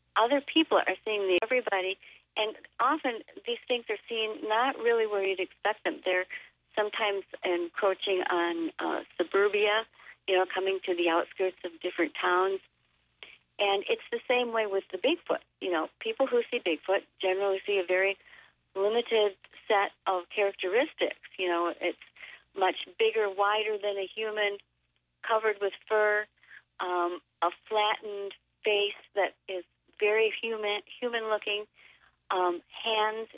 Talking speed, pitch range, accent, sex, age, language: 145 wpm, 180-215 Hz, American, female, 50-69, English